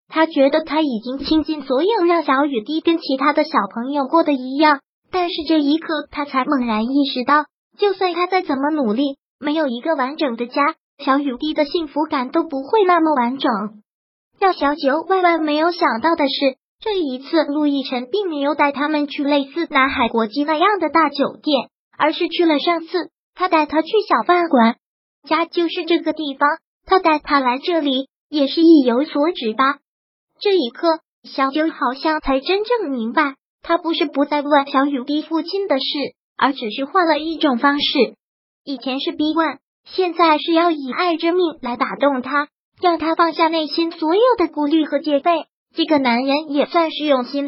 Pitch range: 270-330 Hz